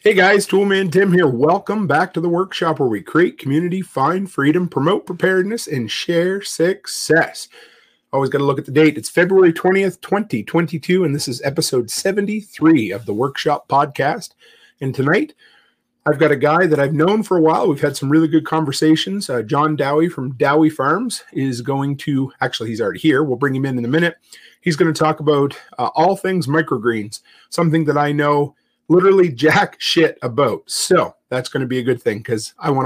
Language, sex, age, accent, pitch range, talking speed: English, male, 30-49, American, 145-185 Hz, 195 wpm